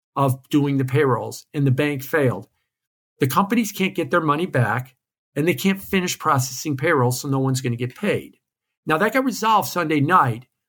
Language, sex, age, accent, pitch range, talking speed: English, male, 50-69, American, 130-180 Hz, 190 wpm